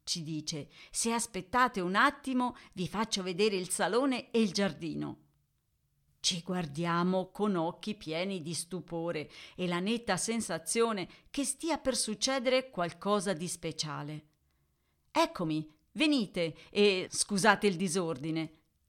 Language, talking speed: Italian, 120 wpm